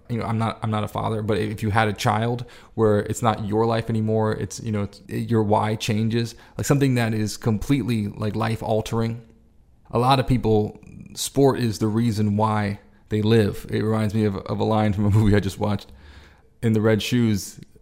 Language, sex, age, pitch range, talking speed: English, male, 20-39, 105-120 Hz, 210 wpm